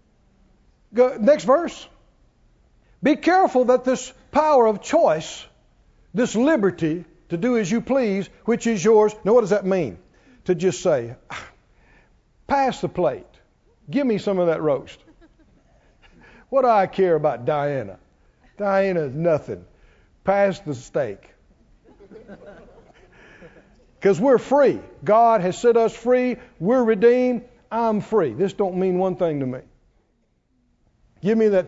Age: 60-79